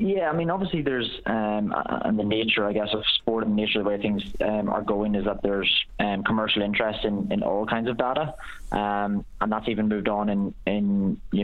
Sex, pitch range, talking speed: male, 100-110 Hz, 230 wpm